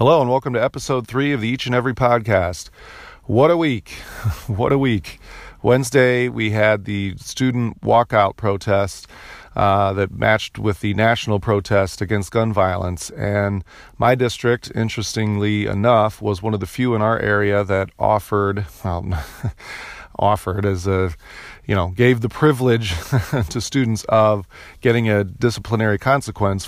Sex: male